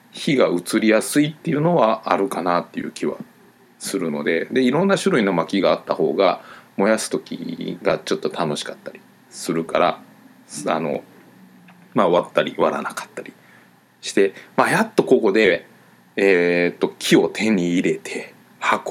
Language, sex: Japanese, male